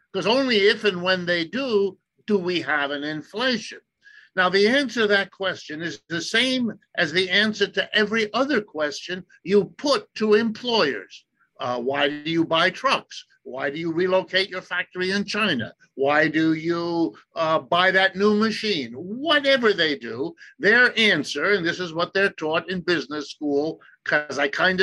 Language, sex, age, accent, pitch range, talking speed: English, male, 60-79, American, 165-220 Hz, 170 wpm